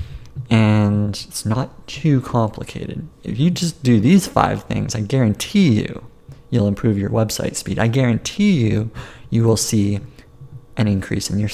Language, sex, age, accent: English, male, 30-49, American